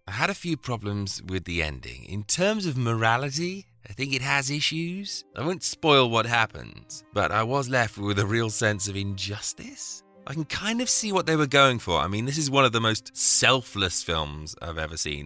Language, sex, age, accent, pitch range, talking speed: English, male, 30-49, British, 95-135 Hz, 215 wpm